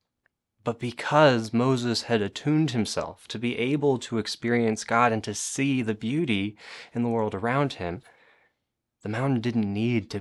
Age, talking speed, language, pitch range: 20-39, 160 wpm, English, 105-135 Hz